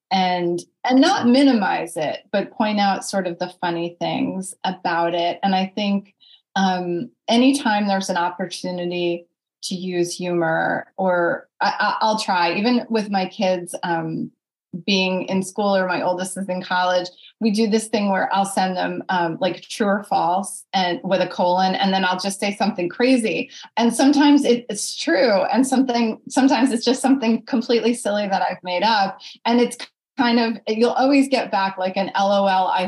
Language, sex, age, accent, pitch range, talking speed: English, female, 30-49, American, 180-235 Hz, 175 wpm